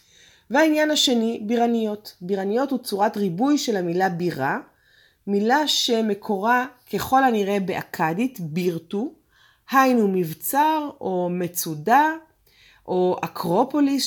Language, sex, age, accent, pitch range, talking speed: Hebrew, female, 30-49, native, 175-245 Hz, 95 wpm